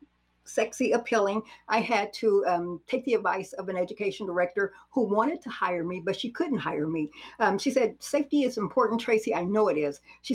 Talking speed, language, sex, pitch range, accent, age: 205 wpm, English, female, 180-245 Hz, American, 60-79